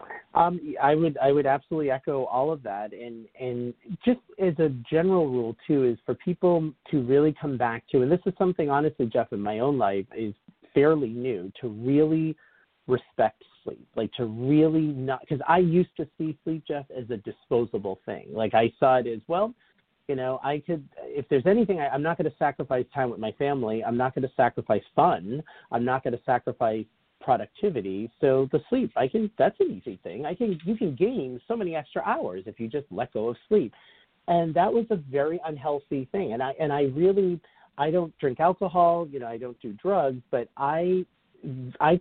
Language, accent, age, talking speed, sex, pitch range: English, American, 40-59, 205 wpm, male, 120-170 Hz